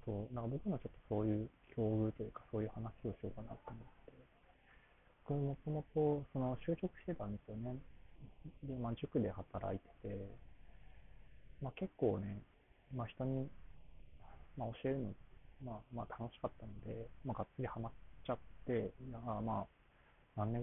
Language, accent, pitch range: Japanese, native, 100-130 Hz